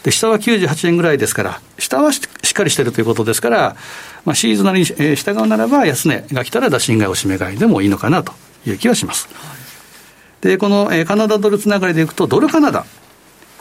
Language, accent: Japanese, native